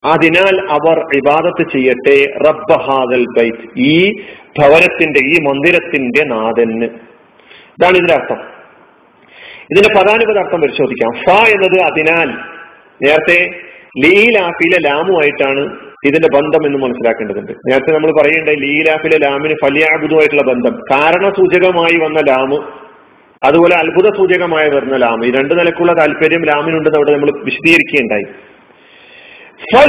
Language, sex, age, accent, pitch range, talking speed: Malayalam, male, 40-59, native, 145-195 Hz, 100 wpm